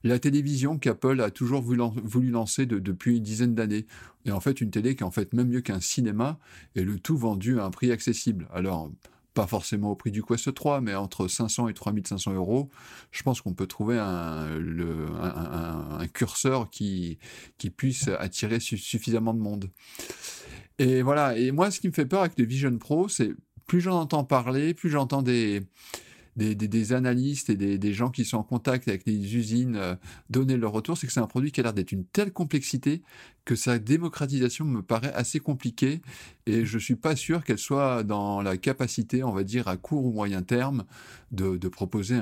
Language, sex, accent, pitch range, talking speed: French, male, French, 100-130 Hz, 205 wpm